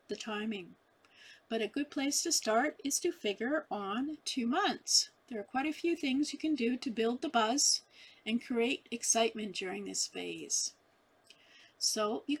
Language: English